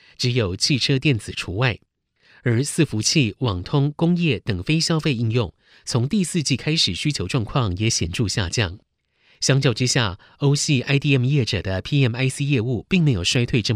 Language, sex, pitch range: Chinese, male, 105-145 Hz